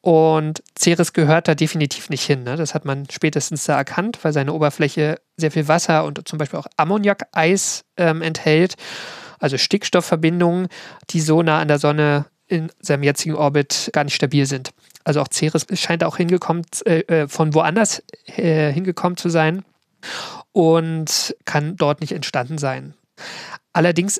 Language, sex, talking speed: German, male, 155 wpm